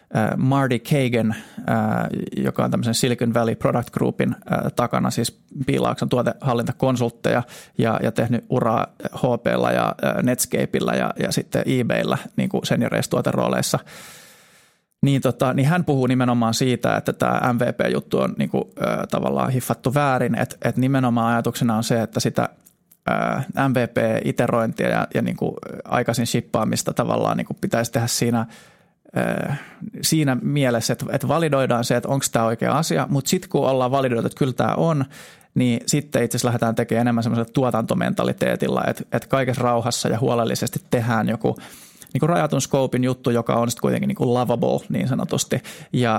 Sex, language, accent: male, Finnish, native